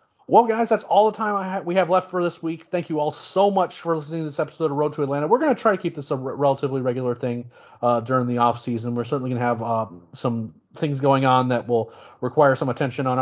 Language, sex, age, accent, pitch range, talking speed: English, male, 30-49, American, 115-140 Hz, 275 wpm